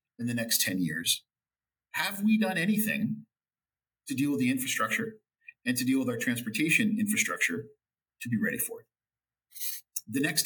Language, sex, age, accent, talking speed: English, male, 50-69, American, 160 wpm